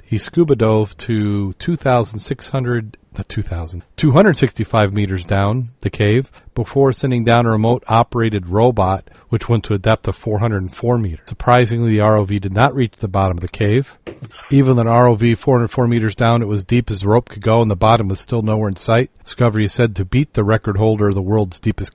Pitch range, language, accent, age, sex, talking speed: 100-120 Hz, English, American, 40-59, male, 190 wpm